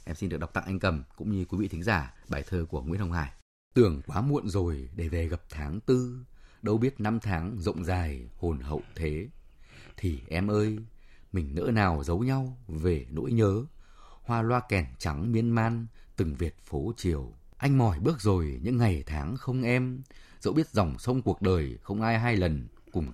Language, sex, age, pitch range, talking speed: Vietnamese, male, 20-39, 85-120 Hz, 200 wpm